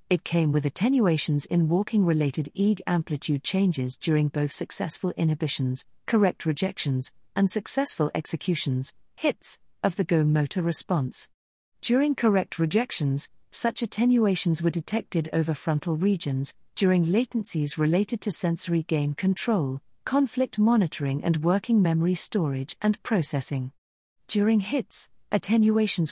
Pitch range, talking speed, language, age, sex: 155-210 Hz, 115 wpm, English, 40-59, female